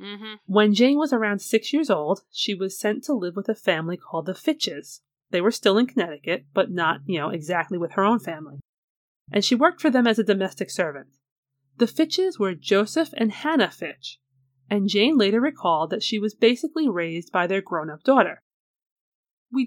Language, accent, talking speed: English, American, 190 wpm